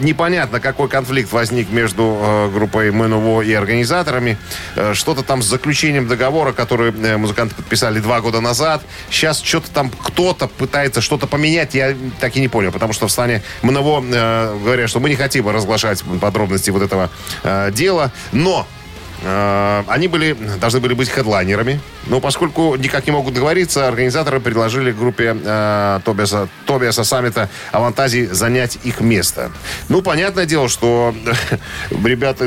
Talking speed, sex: 150 wpm, male